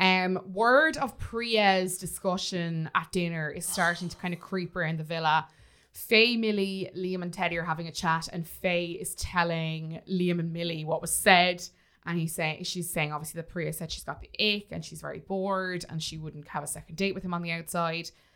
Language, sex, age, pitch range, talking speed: English, female, 20-39, 165-200 Hz, 210 wpm